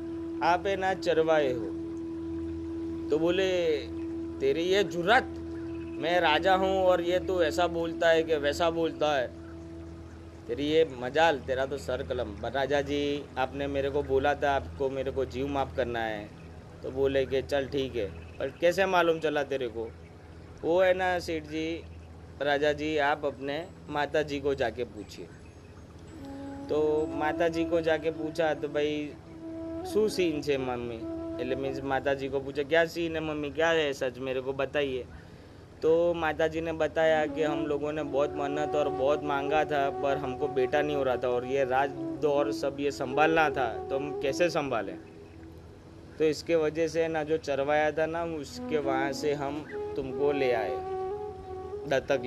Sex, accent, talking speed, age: male, native, 165 wpm, 30-49